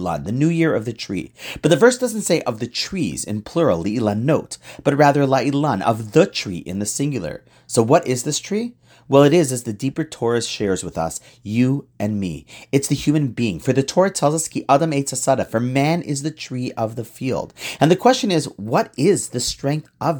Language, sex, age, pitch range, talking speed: English, male, 40-59, 115-155 Hz, 225 wpm